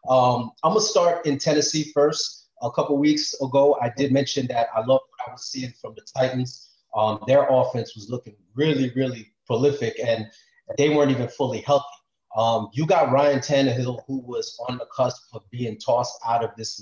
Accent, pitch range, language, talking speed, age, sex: American, 120-140 Hz, English, 195 wpm, 30-49, male